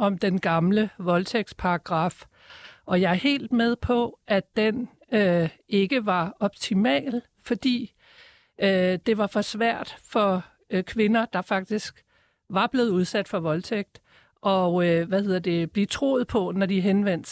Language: Danish